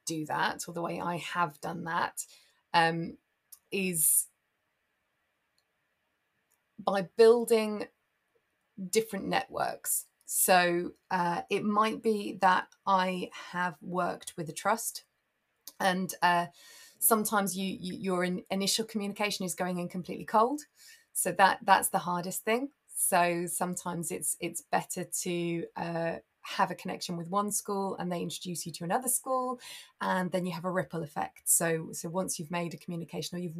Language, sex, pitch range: English, female, 170-195 Hz